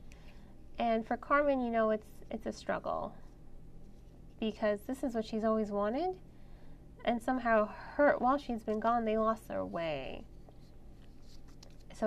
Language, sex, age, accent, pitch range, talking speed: English, female, 20-39, American, 200-260 Hz, 140 wpm